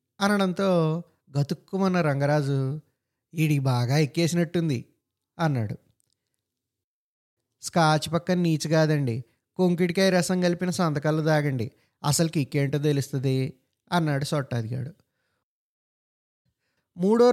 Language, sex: Telugu, male